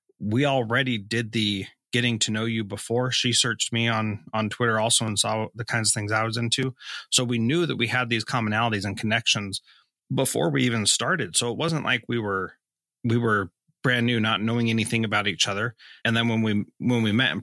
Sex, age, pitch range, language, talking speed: male, 30-49, 110-120 Hz, English, 215 wpm